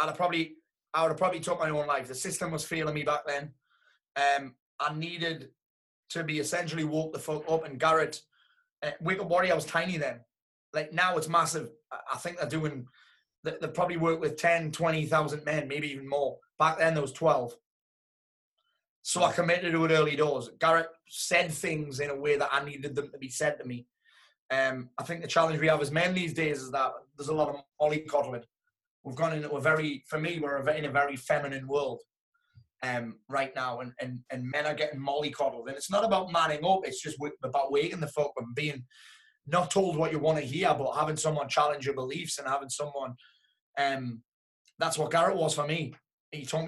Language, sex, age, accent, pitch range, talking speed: English, male, 20-39, British, 140-165 Hz, 210 wpm